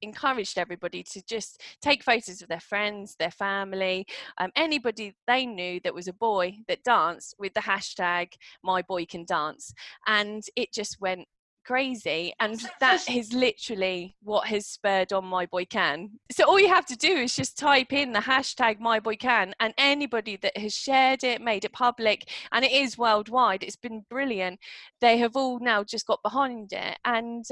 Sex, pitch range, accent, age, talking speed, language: female, 190-240 Hz, British, 20-39, 185 wpm, English